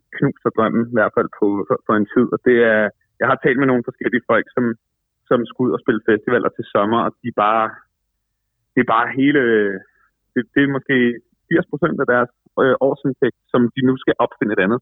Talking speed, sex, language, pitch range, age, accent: 205 wpm, male, Danish, 115-140 Hz, 30-49, native